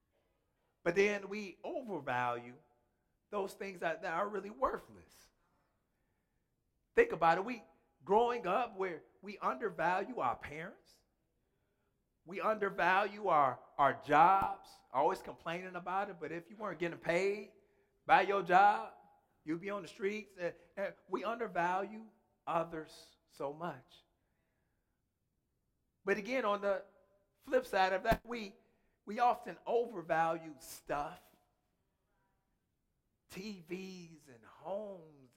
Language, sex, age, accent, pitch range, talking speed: English, male, 50-69, American, 165-215 Hz, 115 wpm